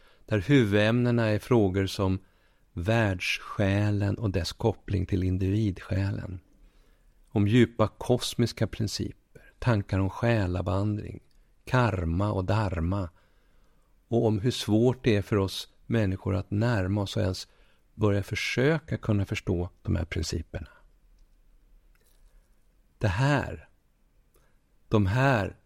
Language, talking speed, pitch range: Swedish, 110 wpm, 95-115 Hz